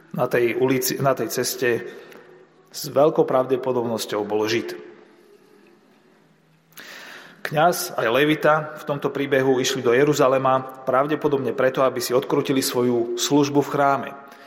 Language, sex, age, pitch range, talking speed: Slovak, male, 30-49, 130-150 Hz, 125 wpm